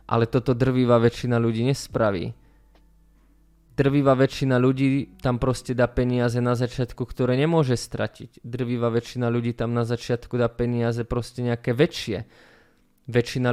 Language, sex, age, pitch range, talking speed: Slovak, male, 20-39, 120-135 Hz, 135 wpm